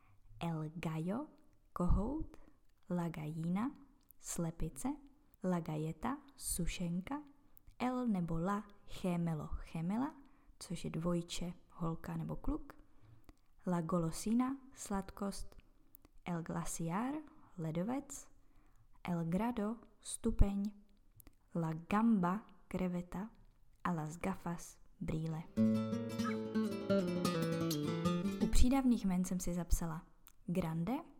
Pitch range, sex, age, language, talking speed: 165-210 Hz, female, 20-39, Czech, 80 wpm